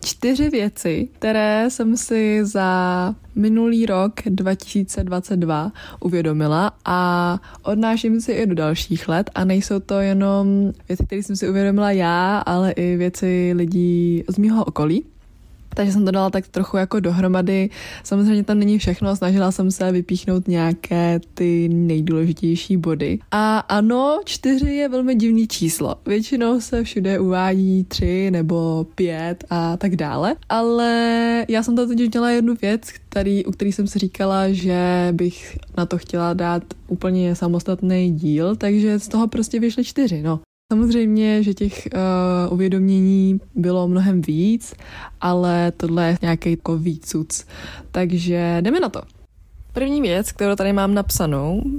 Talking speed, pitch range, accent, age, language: 145 wpm, 175-215 Hz, native, 20-39, Czech